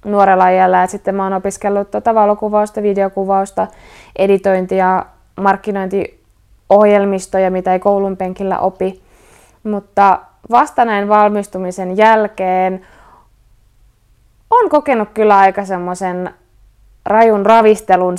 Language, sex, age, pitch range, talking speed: Finnish, female, 20-39, 185-220 Hz, 90 wpm